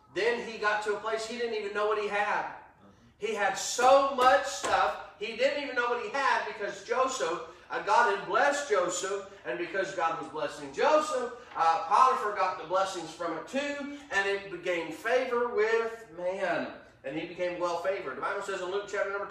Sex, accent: male, American